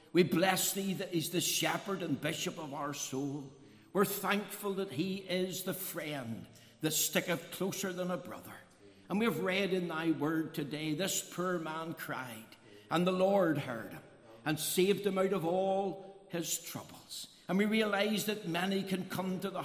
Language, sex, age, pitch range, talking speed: English, male, 60-79, 160-190 Hz, 180 wpm